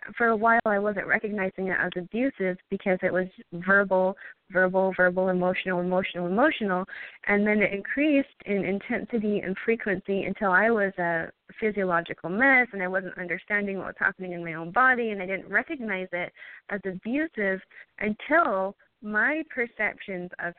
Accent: American